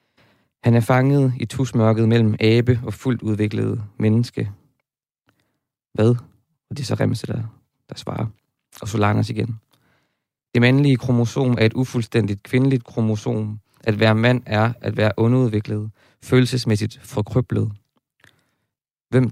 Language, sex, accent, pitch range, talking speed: Danish, male, native, 110-125 Hz, 125 wpm